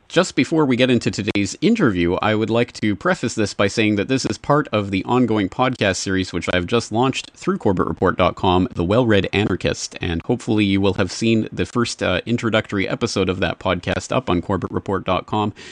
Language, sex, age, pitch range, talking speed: English, male, 30-49, 90-115 Hz, 190 wpm